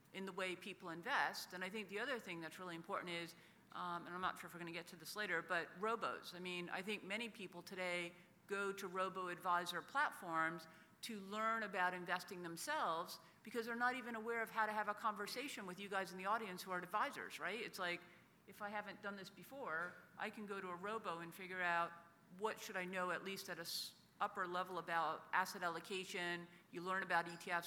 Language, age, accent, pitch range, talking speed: English, 50-69, American, 175-200 Hz, 215 wpm